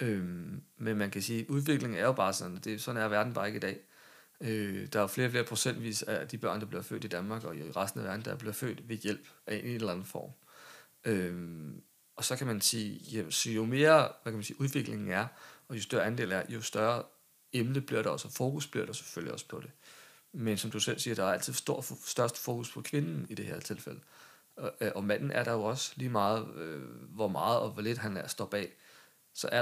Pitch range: 105-125 Hz